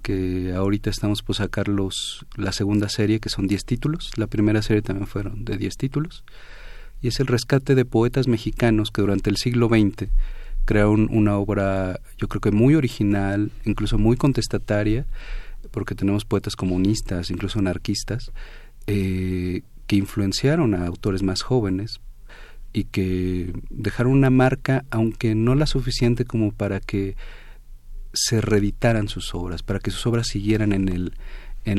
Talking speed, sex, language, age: 155 wpm, male, Spanish, 40-59